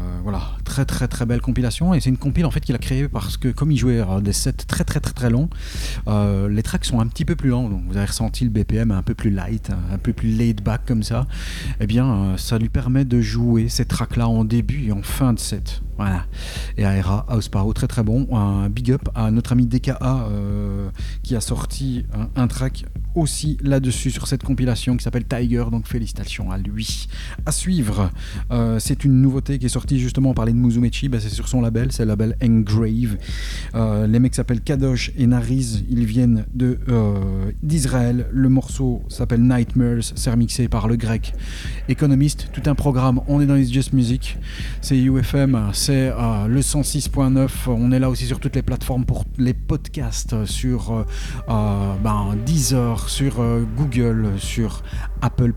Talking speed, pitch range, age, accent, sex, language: 200 wpm, 105-130 Hz, 40-59, French, male, French